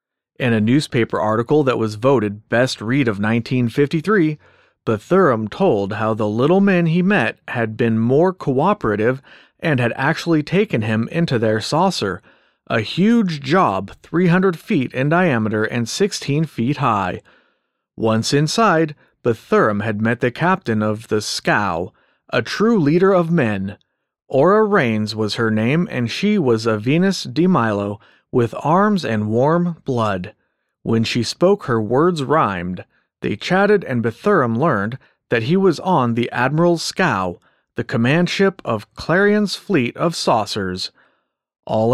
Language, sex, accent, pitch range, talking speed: English, male, American, 115-175 Hz, 145 wpm